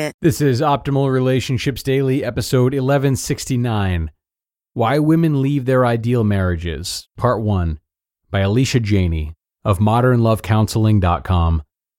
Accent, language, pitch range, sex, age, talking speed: American, English, 95-130 Hz, male, 30-49, 100 wpm